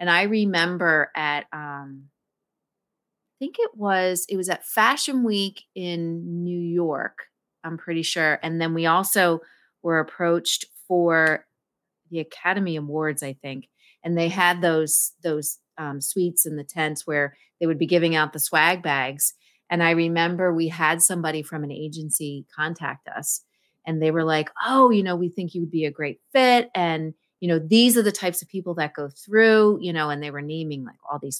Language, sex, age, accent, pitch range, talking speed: English, female, 30-49, American, 160-210 Hz, 185 wpm